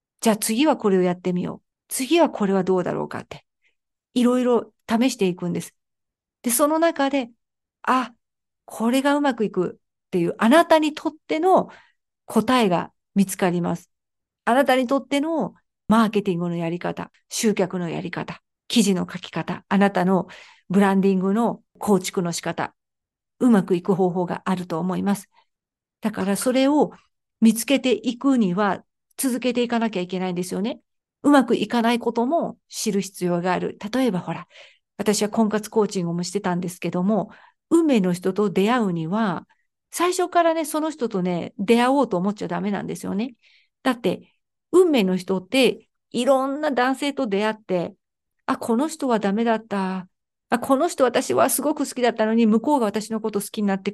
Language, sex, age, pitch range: Japanese, female, 50-69, 190-255 Hz